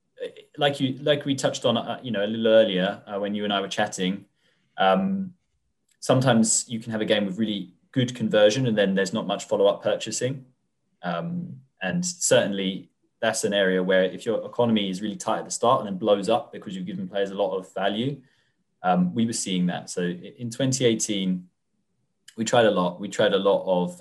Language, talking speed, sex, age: English, 205 wpm, male, 20-39